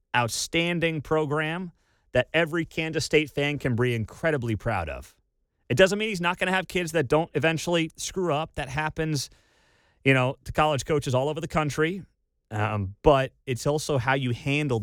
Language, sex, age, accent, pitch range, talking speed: English, male, 30-49, American, 105-155 Hz, 180 wpm